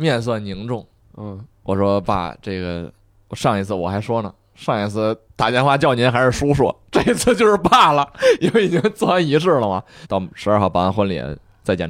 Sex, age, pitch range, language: male, 20-39, 90-150 Hz, Chinese